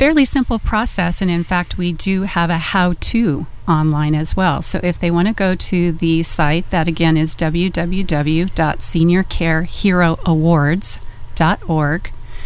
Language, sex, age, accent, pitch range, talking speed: English, female, 40-59, American, 155-185 Hz, 135 wpm